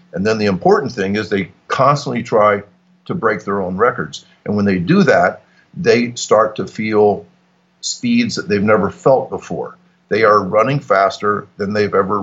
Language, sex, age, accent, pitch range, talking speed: English, male, 50-69, American, 95-115 Hz, 175 wpm